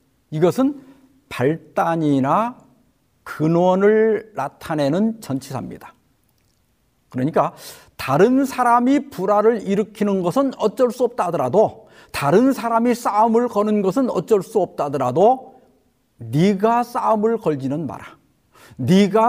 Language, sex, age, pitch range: Korean, male, 50-69, 155-240 Hz